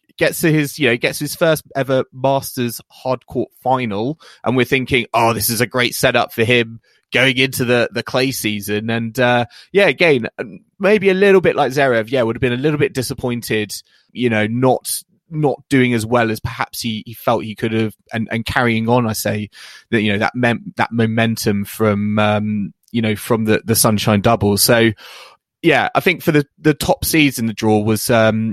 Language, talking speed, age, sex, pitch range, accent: English, 200 wpm, 20-39, male, 110-135 Hz, British